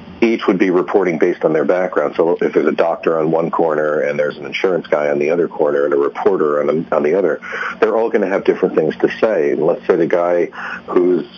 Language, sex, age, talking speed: English, male, 50-69, 255 wpm